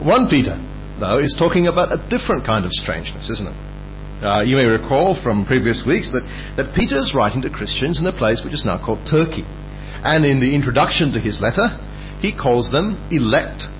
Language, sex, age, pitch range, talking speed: English, male, 40-59, 140-185 Hz, 195 wpm